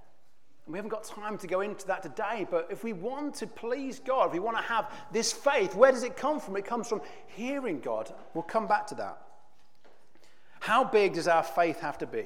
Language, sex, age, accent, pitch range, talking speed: English, male, 40-59, British, 170-255 Hz, 225 wpm